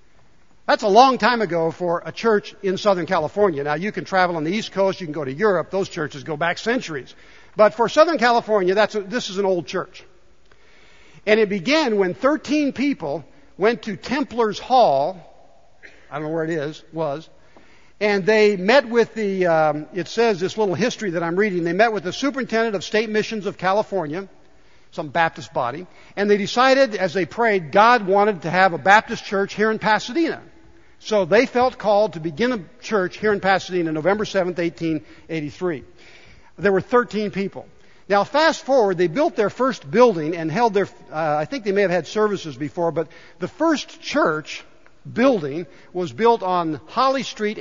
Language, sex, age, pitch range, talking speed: English, male, 60-79, 175-220 Hz, 185 wpm